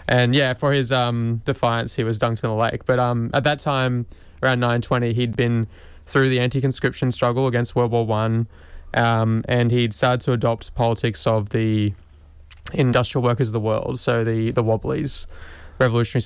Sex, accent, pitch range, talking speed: male, Australian, 110-125 Hz, 175 wpm